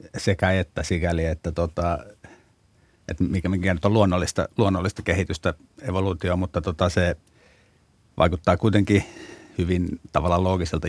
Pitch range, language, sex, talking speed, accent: 80-95 Hz, Finnish, male, 120 wpm, native